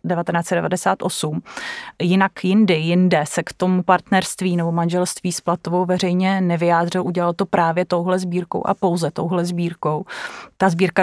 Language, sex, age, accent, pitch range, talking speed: Czech, female, 30-49, native, 170-185 Hz, 135 wpm